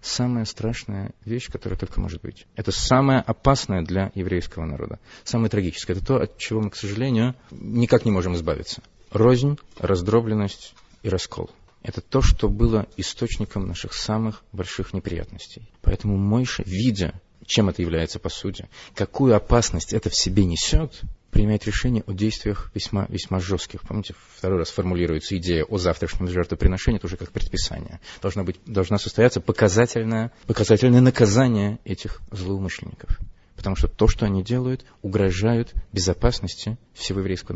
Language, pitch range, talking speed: Russian, 95-115 Hz, 140 wpm